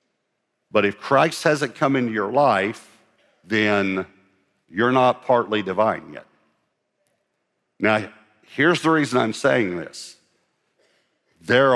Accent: American